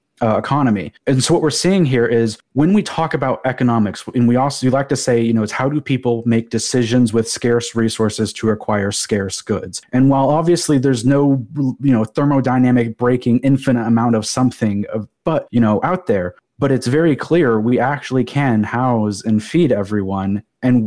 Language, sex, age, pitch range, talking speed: English, male, 30-49, 115-135 Hz, 195 wpm